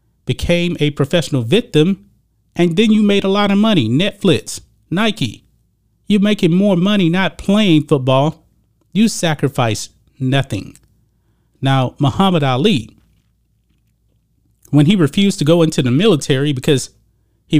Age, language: 30-49, English